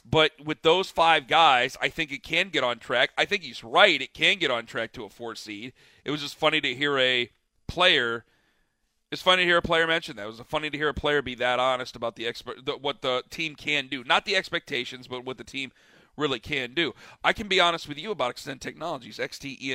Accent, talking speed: American, 250 wpm